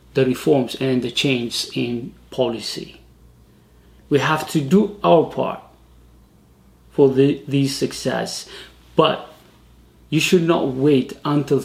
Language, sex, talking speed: English, male, 120 wpm